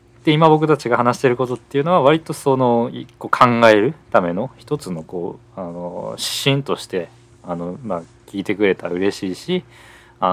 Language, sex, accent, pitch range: Japanese, male, native, 90-125 Hz